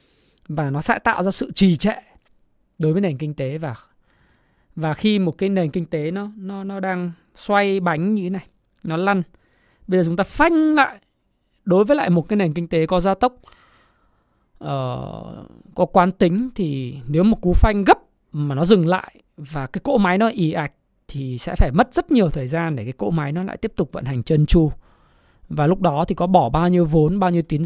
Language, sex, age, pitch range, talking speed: Vietnamese, male, 20-39, 155-205 Hz, 220 wpm